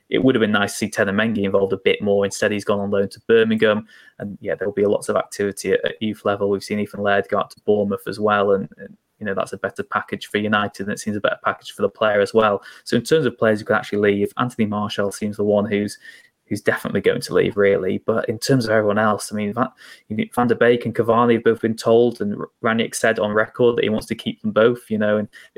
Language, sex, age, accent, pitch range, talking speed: English, male, 20-39, British, 105-125 Hz, 270 wpm